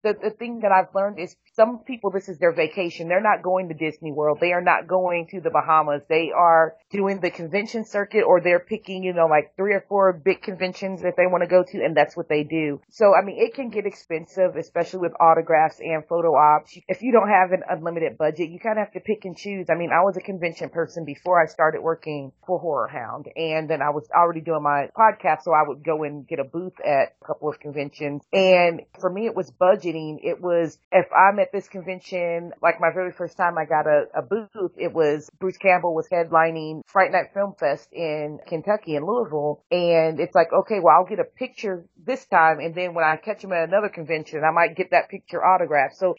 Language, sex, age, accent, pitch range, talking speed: English, female, 30-49, American, 155-185 Hz, 235 wpm